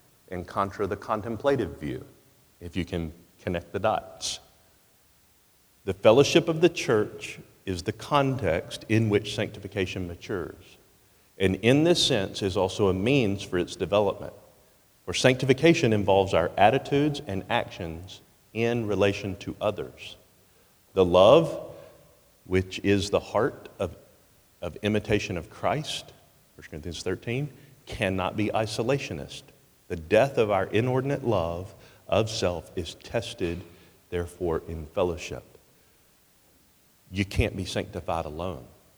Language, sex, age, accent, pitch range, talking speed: English, male, 40-59, American, 85-110 Hz, 125 wpm